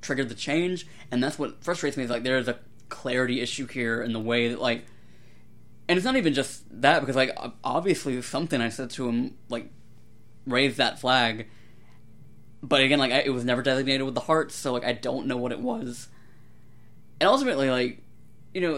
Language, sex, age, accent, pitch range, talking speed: English, male, 20-39, American, 120-135 Hz, 200 wpm